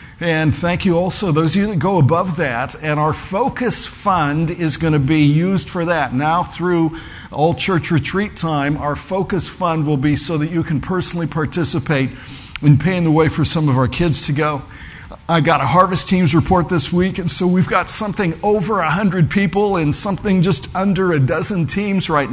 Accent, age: American, 50-69